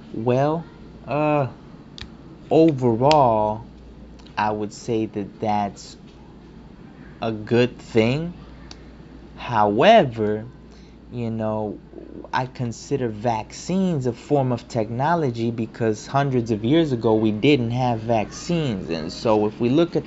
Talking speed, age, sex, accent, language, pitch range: 110 wpm, 20-39, male, American, English, 115-140 Hz